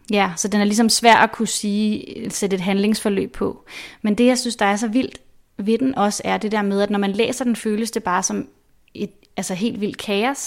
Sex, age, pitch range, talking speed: female, 30-49, 200-235 Hz, 240 wpm